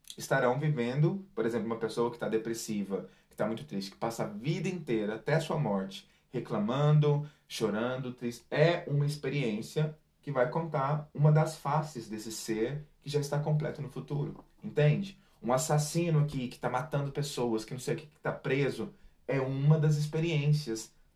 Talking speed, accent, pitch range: 175 wpm, Brazilian, 125-155 Hz